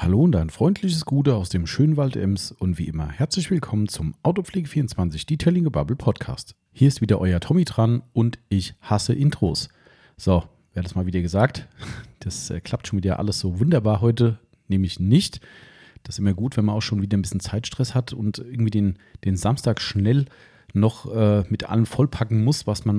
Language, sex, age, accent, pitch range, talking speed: German, male, 40-59, German, 100-130 Hz, 195 wpm